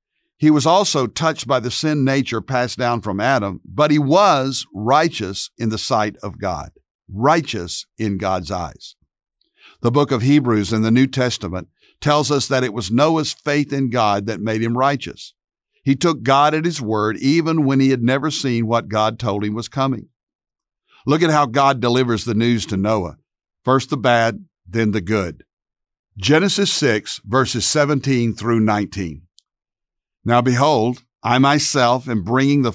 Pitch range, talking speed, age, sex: 110-145 Hz, 170 wpm, 60-79, male